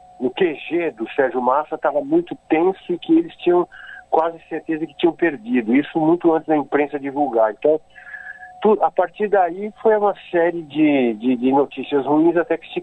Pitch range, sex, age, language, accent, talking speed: 130-180 Hz, male, 50-69, Portuguese, Brazilian, 180 wpm